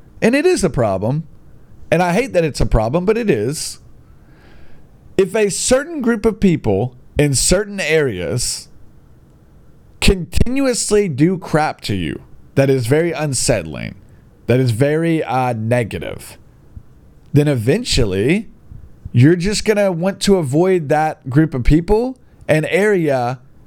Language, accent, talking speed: English, American, 135 wpm